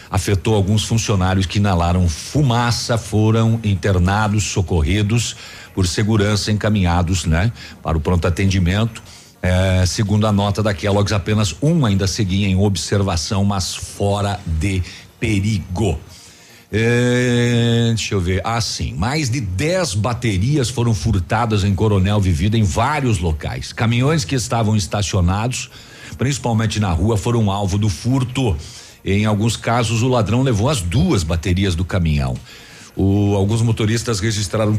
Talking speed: 135 wpm